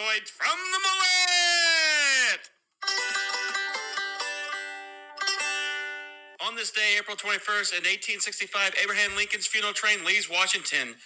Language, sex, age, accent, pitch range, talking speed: English, male, 40-59, American, 175-235 Hz, 85 wpm